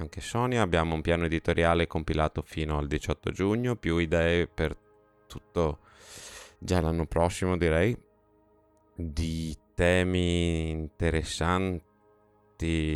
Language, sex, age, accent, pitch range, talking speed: Italian, male, 20-39, native, 80-100 Hz, 100 wpm